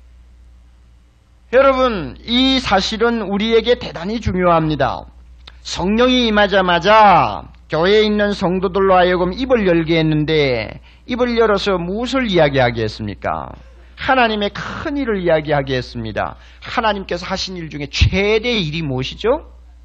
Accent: native